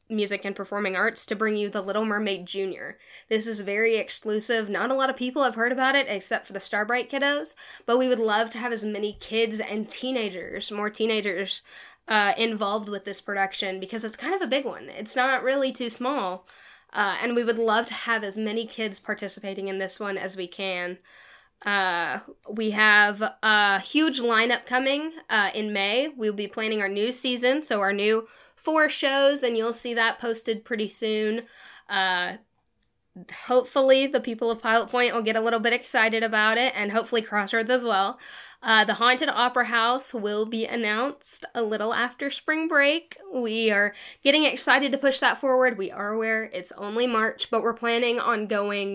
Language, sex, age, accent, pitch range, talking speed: English, female, 10-29, American, 210-250 Hz, 190 wpm